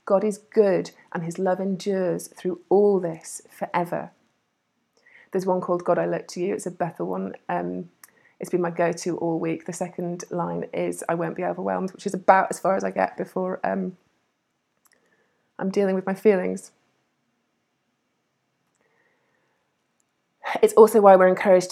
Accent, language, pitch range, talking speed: British, English, 170-205 Hz, 160 wpm